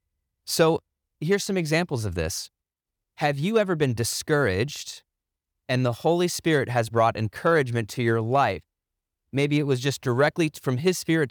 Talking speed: 155 wpm